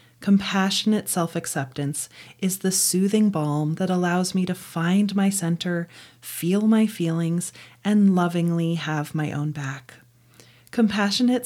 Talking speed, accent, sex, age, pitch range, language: 120 wpm, American, female, 30-49, 160-205 Hz, English